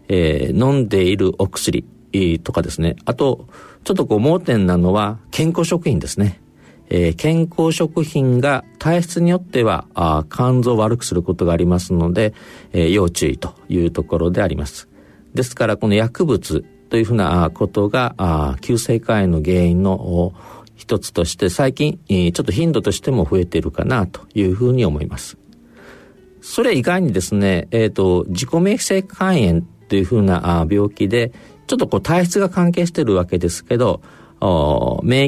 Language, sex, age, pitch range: Japanese, male, 50-69, 90-135 Hz